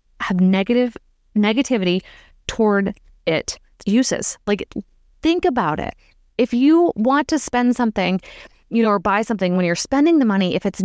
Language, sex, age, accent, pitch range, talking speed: English, female, 20-39, American, 200-270 Hz, 155 wpm